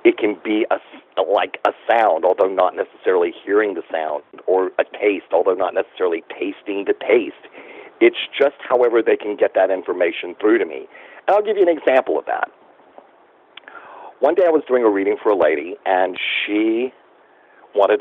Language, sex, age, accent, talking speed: English, male, 50-69, American, 175 wpm